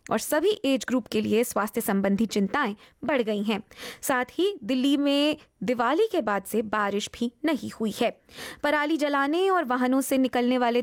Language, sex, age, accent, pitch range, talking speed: Hindi, female, 20-39, native, 220-290 Hz, 175 wpm